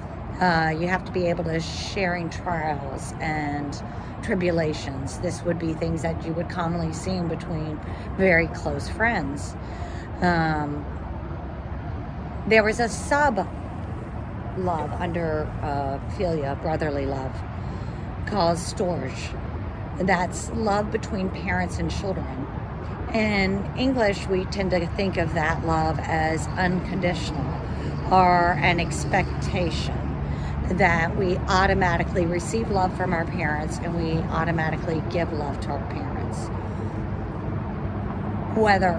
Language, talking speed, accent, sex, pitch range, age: English, 115 wpm, American, female, 110-180 Hz, 40-59